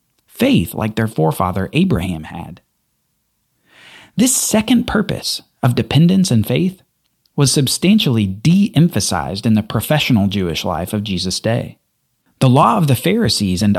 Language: English